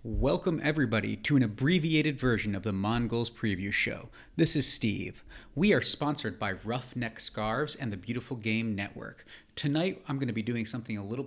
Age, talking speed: 40-59, 180 wpm